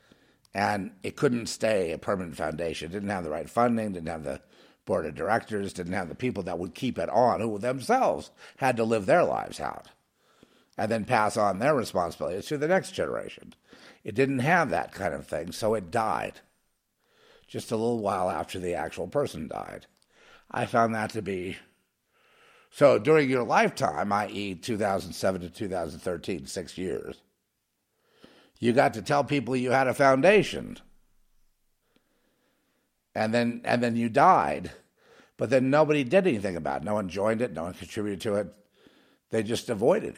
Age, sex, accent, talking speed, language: 50-69, male, American, 170 wpm, English